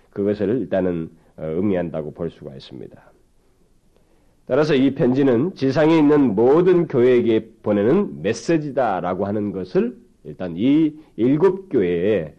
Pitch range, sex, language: 100-145 Hz, male, Korean